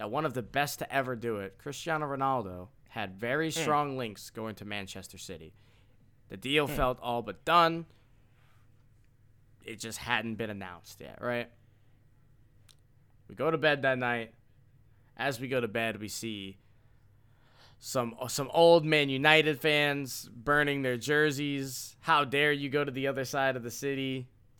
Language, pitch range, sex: English, 110-135 Hz, male